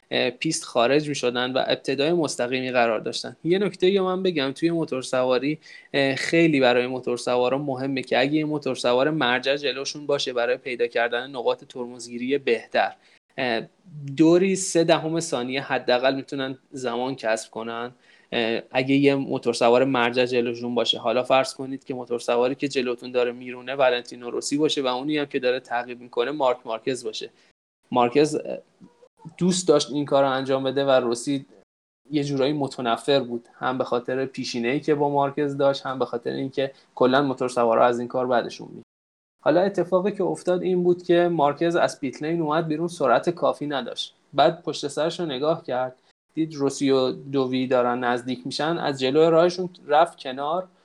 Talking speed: 160 wpm